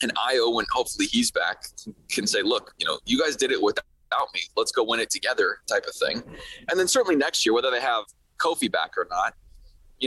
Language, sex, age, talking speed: English, male, 20-39, 225 wpm